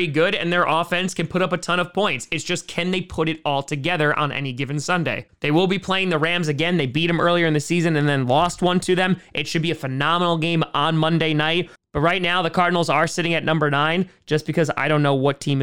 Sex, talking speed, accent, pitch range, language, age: male, 265 wpm, American, 140-180 Hz, English, 20-39